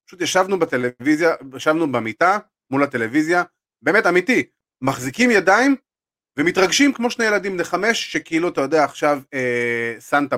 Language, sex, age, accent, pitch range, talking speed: Hebrew, male, 30-49, native, 120-170 Hz, 135 wpm